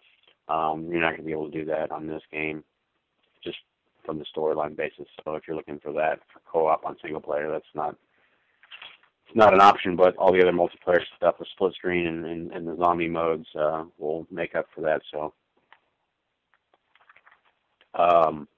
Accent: American